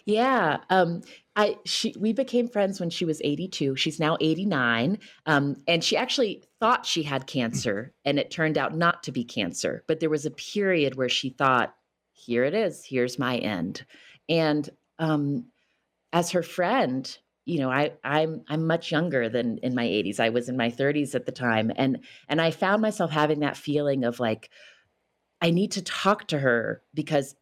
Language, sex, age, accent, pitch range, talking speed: English, female, 30-49, American, 130-170 Hz, 185 wpm